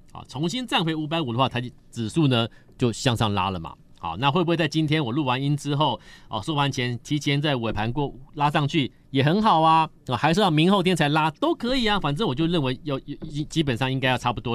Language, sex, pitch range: Chinese, male, 130-185 Hz